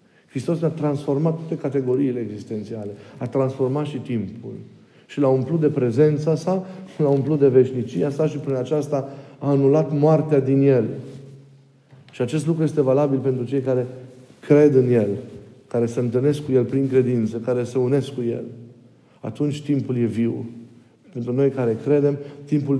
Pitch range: 115-140 Hz